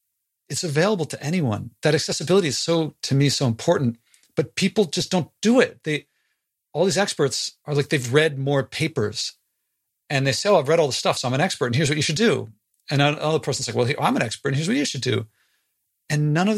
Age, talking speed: 40-59, 230 wpm